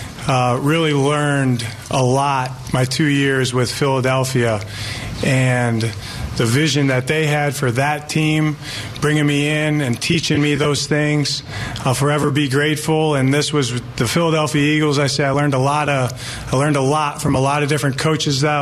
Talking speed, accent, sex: 175 wpm, American, male